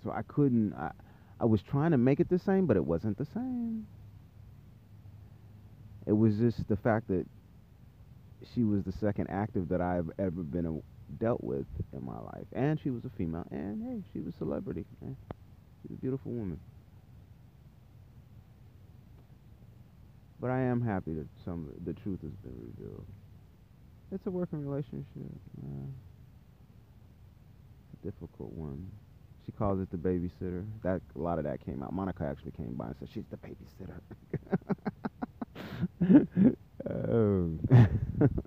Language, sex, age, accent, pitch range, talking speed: English, male, 30-49, American, 90-120 Hz, 150 wpm